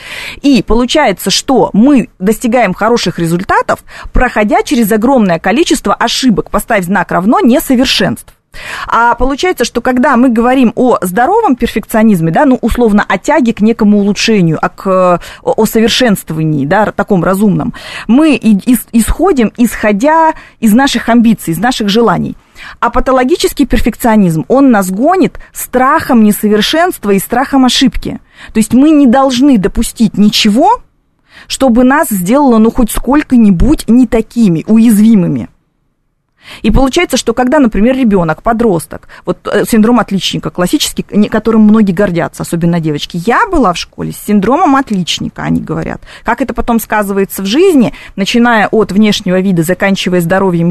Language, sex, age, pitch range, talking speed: Russian, female, 20-39, 195-250 Hz, 135 wpm